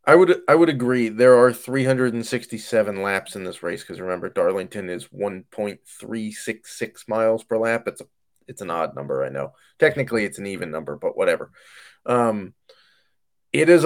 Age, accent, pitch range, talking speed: 20-39, American, 110-140 Hz, 165 wpm